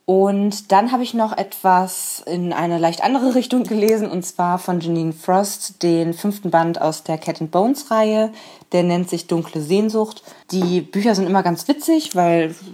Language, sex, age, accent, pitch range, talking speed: German, female, 20-39, German, 155-185 Hz, 175 wpm